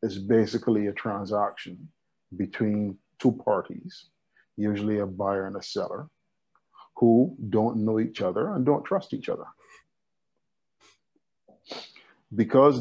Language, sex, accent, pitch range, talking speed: English, male, American, 100-115 Hz, 110 wpm